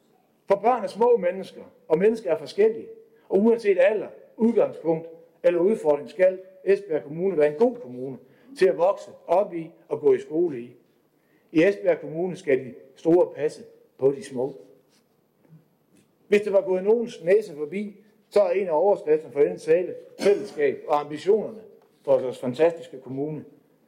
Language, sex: Danish, male